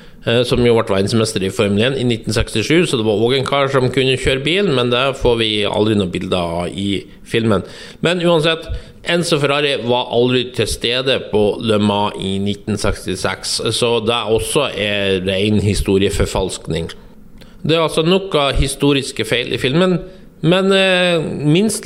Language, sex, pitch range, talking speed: English, male, 110-155 Hz, 160 wpm